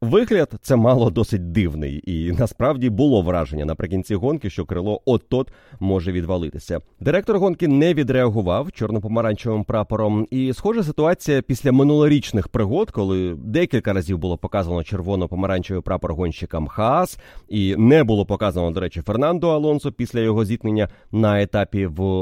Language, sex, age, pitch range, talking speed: Ukrainian, male, 30-49, 95-130 Hz, 140 wpm